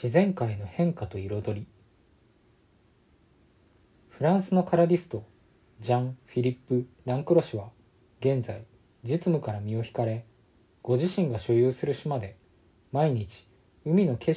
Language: Japanese